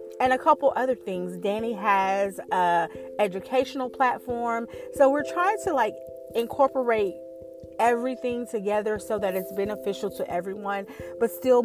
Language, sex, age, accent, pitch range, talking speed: English, female, 40-59, American, 185-245 Hz, 135 wpm